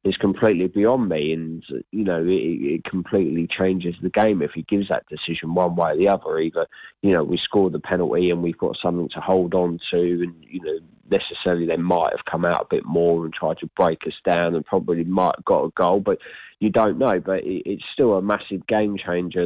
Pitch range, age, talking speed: 85-95 Hz, 20-39, 230 wpm